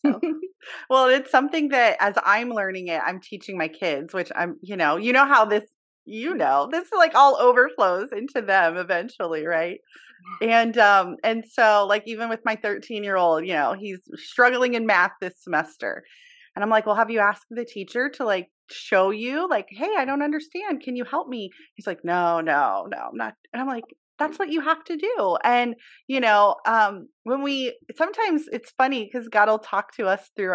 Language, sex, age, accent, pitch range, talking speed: English, female, 30-49, American, 195-265 Hz, 200 wpm